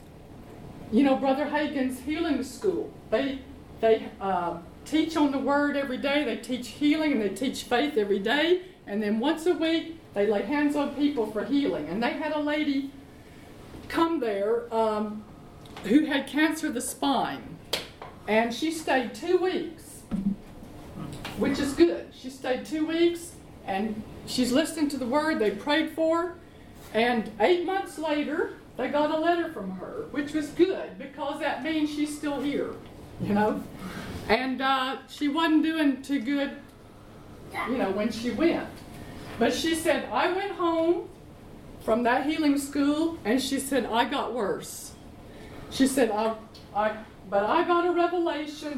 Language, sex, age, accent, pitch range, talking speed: English, female, 40-59, American, 240-315 Hz, 160 wpm